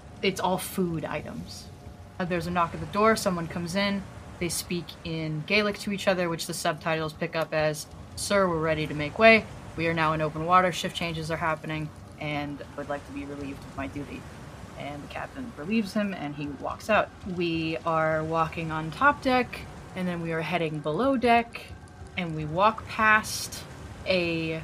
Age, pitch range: 20-39, 155-200 Hz